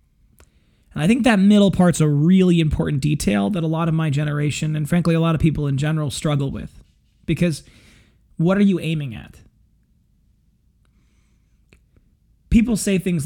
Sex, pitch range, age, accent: male, 130-175 Hz, 30-49, American